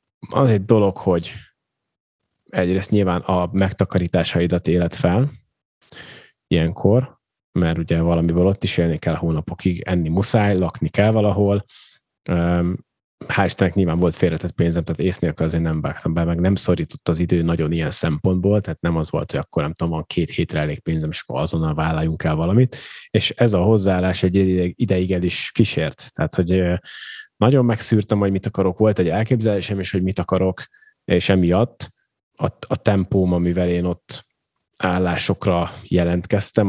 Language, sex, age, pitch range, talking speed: Hungarian, male, 30-49, 85-100 Hz, 155 wpm